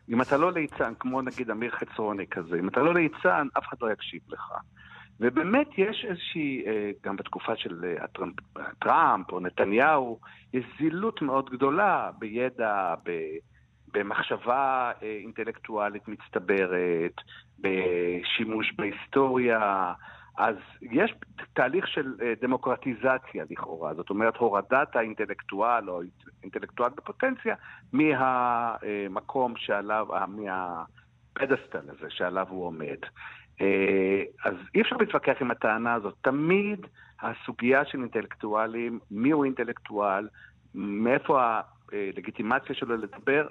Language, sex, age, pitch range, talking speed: Hebrew, male, 50-69, 105-140 Hz, 105 wpm